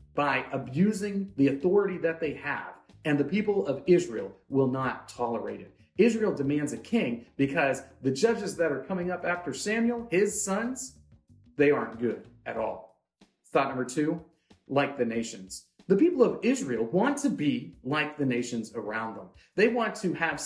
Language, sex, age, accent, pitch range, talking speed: English, male, 40-59, American, 135-200 Hz, 170 wpm